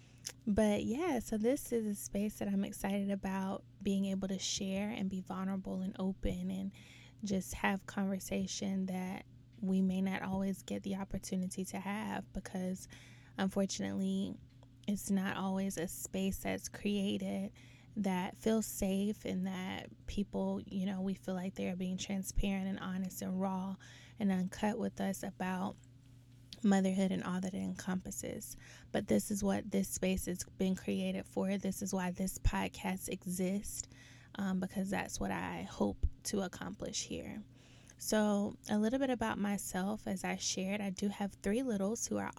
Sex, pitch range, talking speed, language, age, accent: female, 125-200 Hz, 160 wpm, English, 20-39, American